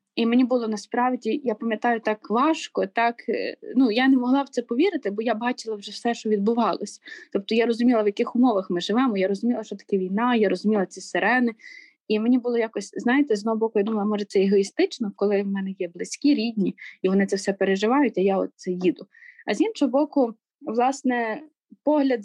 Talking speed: 200 wpm